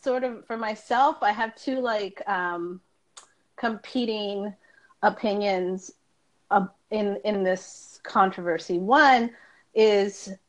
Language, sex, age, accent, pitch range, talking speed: English, female, 30-49, American, 175-210 Hz, 105 wpm